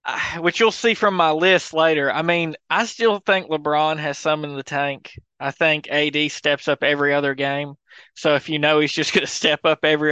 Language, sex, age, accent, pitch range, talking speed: English, male, 20-39, American, 140-165 Hz, 225 wpm